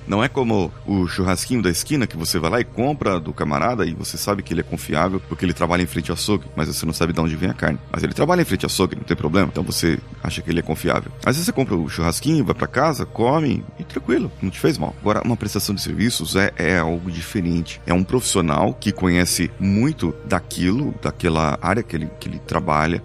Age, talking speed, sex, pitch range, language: 30-49, 240 wpm, male, 85-115 Hz, Portuguese